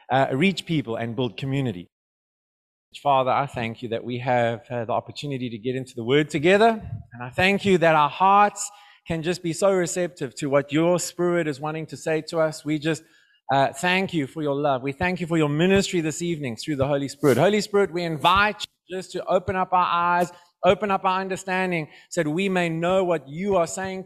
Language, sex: English, male